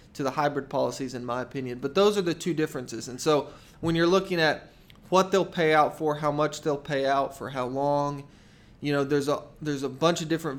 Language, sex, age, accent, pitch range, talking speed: English, male, 20-39, American, 135-160 Hz, 235 wpm